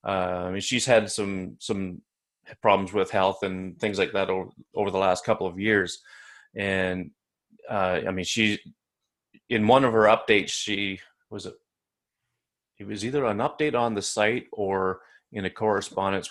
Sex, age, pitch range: male, 30-49, 95-105 Hz